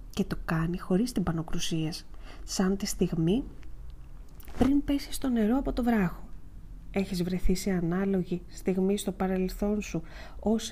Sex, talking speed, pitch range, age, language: female, 140 wpm, 175-235 Hz, 20-39, Greek